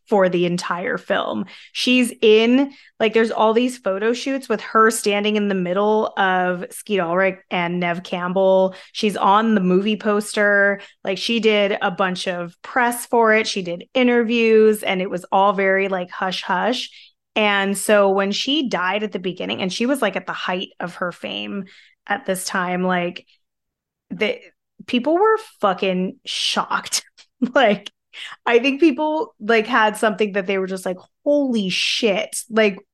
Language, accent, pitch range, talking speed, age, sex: English, American, 185-220 Hz, 165 wpm, 20-39, female